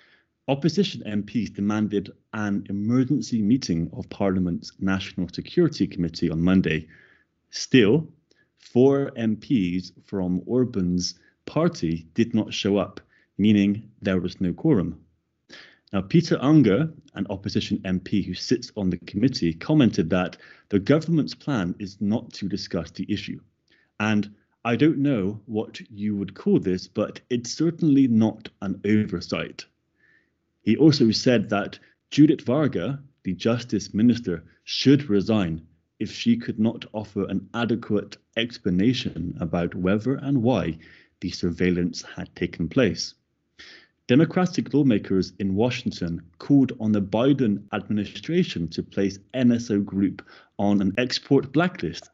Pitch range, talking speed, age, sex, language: 95-125 Hz, 125 wpm, 30-49, male, English